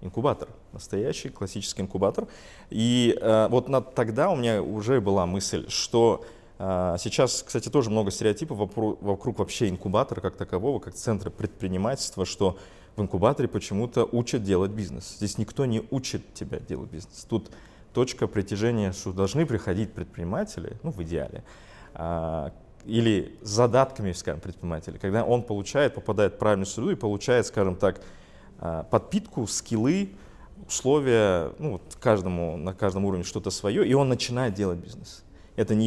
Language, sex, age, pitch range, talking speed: Russian, male, 20-39, 95-115 Hz, 145 wpm